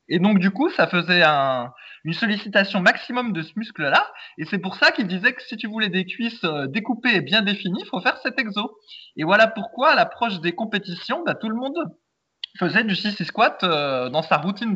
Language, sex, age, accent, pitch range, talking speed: French, male, 20-39, French, 160-215 Hz, 220 wpm